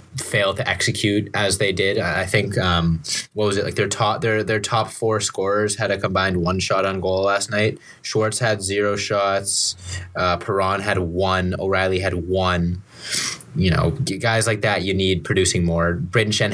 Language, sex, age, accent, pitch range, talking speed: English, male, 20-39, American, 90-110 Hz, 180 wpm